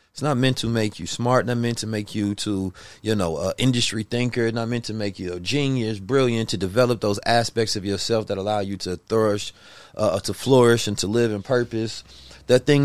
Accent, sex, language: American, male, English